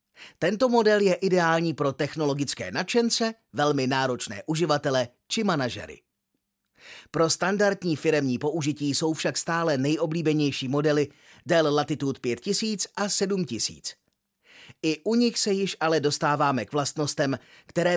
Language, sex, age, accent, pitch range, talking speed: Czech, male, 30-49, native, 140-180 Hz, 120 wpm